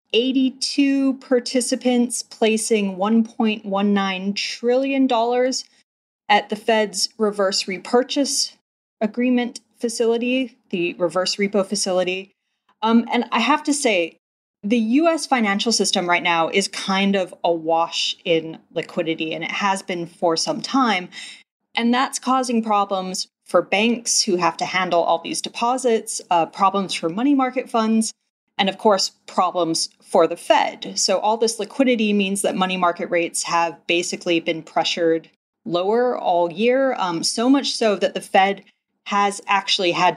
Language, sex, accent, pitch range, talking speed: English, female, American, 180-240 Hz, 140 wpm